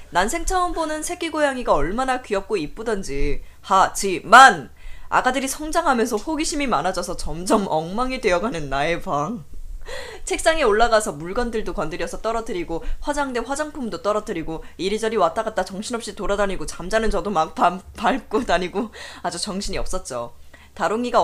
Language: Korean